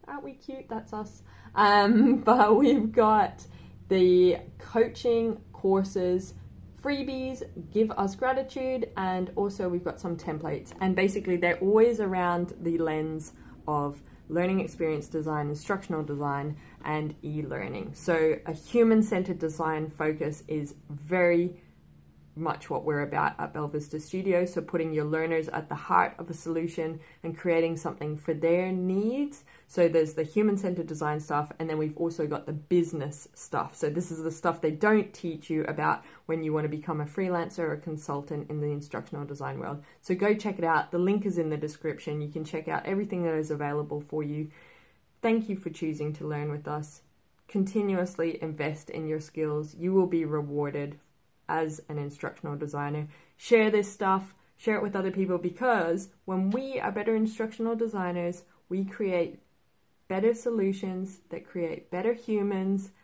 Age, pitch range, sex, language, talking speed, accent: 20-39, 155-195 Hz, female, English, 165 wpm, Australian